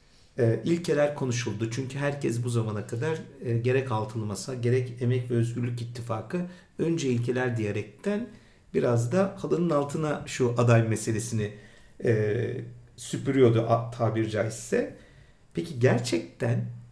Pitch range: 115-140 Hz